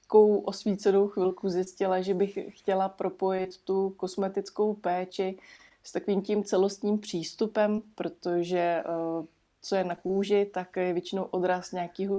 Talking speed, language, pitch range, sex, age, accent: 130 wpm, Czech, 175-195 Hz, female, 20-39, native